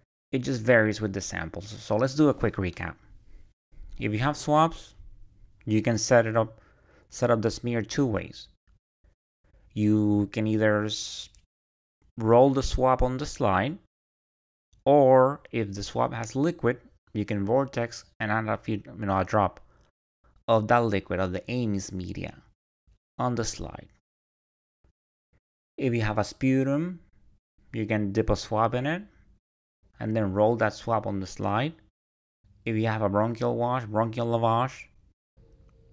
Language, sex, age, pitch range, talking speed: English, male, 30-49, 95-115 Hz, 150 wpm